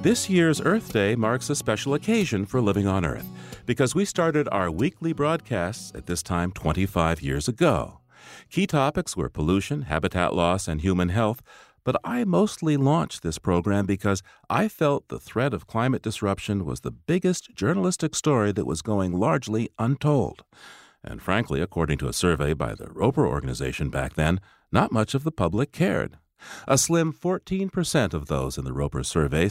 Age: 50-69